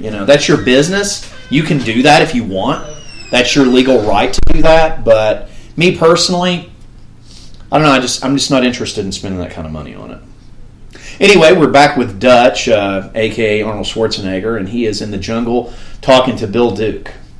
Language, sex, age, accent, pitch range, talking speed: English, male, 30-49, American, 95-130 Hz, 200 wpm